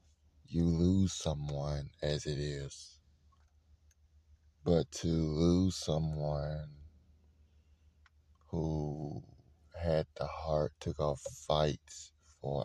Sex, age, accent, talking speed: male, 30-49, American, 85 wpm